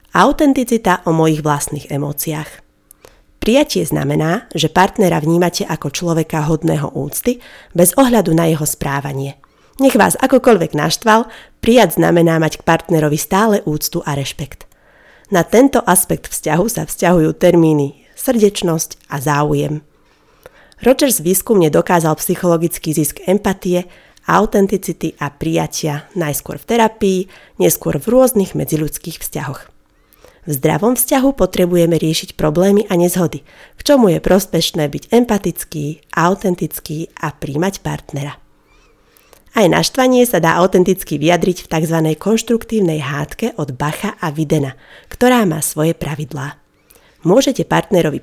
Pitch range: 150-200 Hz